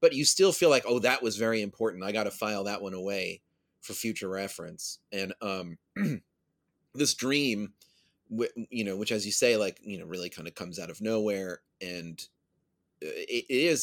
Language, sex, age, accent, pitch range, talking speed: English, male, 30-49, American, 100-145 Hz, 195 wpm